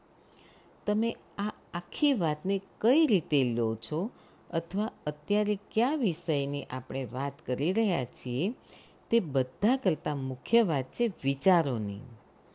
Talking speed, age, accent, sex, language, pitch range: 110 wpm, 50-69, native, female, Gujarati, 130-195 Hz